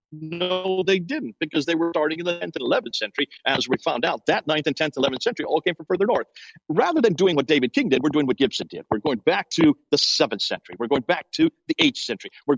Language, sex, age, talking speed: English, male, 50-69, 260 wpm